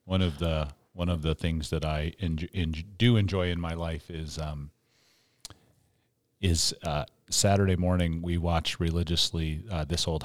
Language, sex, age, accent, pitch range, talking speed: English, male, 40-59, American, 80-100 Hz, 165 wpm